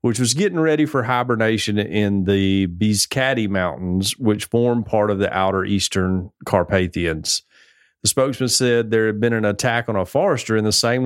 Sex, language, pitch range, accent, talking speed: male, English, 95-120 Hz, American, 175 wpm